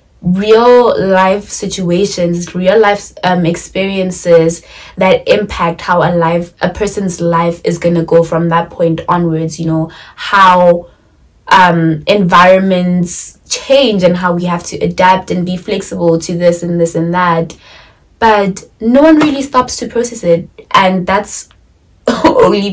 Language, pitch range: English, 170-210 Hz